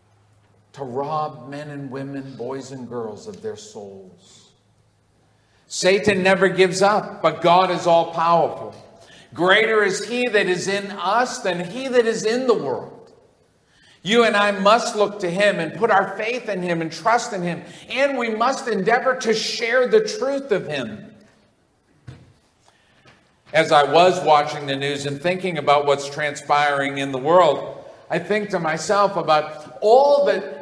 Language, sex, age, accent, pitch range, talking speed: English, male, 50-69, American, 150-215 Hz, 160 wpm